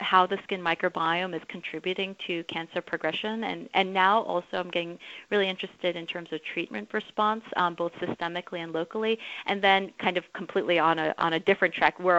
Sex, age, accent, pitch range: female, 30-49, American, 165-190 Hz